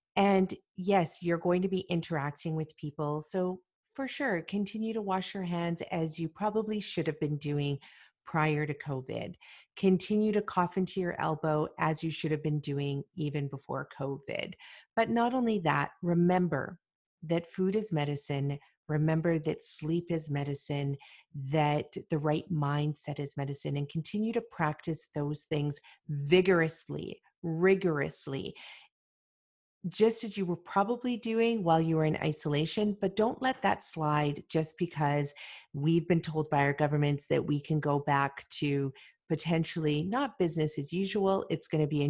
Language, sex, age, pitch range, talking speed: English, female, 40-59, 150-190 Hz, 155 wpm